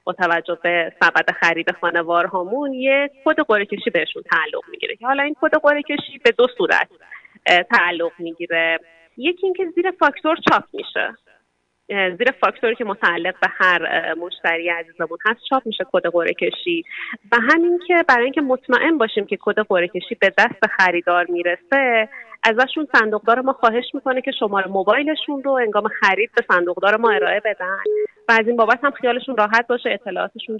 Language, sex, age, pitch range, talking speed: Persian, female, 30-49, 185-260 Hz, 155 wpm